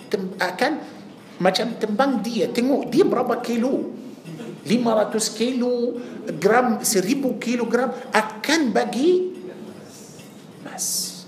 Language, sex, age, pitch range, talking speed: Malay, male, 50-69, 170-250 Hz, 90 wpm